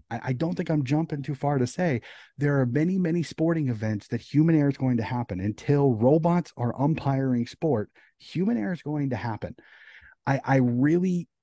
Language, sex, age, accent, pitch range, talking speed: English, male, 30-49, American, 115-145 Hz, 190 wpm